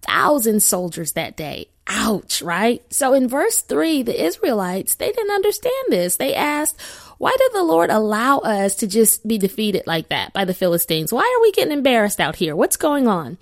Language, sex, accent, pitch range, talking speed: English, female, American, 185-250 Hz, 190 wpm